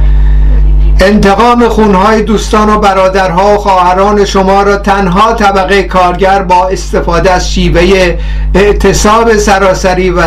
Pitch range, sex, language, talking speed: 165-195 Hz, male, Persian, 110 wpm